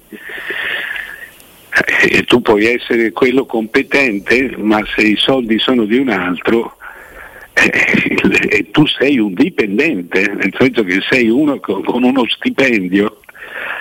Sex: male